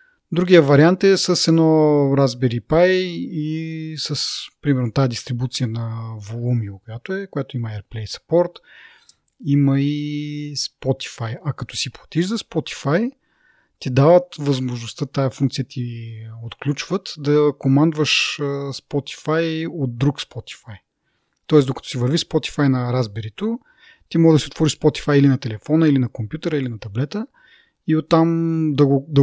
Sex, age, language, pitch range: male, 30-49, Bulgarian, 125-160 Hz